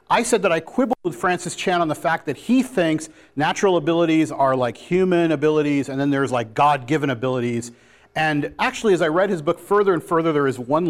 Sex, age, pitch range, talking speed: male, 40-59, 130-170 Hz, 215 wpm